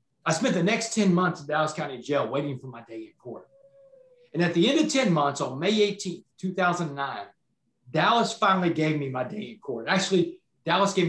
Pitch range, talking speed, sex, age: 150-205 Hz, 205 wpm, male, 40-59